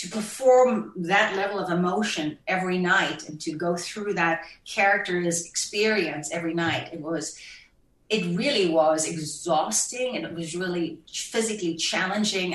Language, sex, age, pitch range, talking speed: English, female, 40-59, 160-200 Hz, 145 wpm